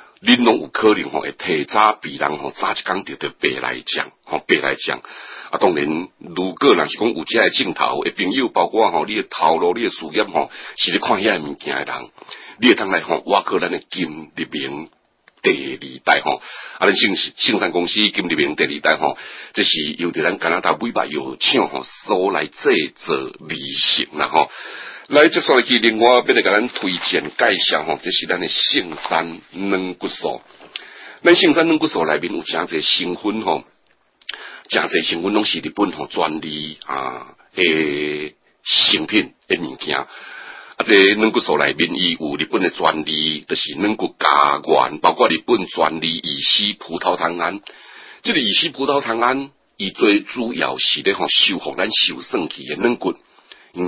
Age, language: 60-79, Chinese